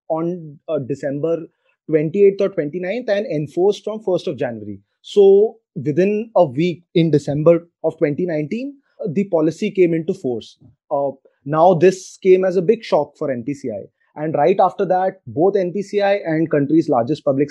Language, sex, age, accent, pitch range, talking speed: English, male, 20-39, Indian, 150-195 Hz, 155 wpm